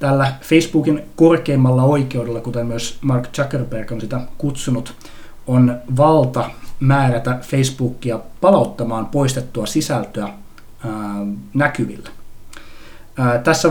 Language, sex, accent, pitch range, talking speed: Finnish, male, native, 115-135 Hz, 90 wpm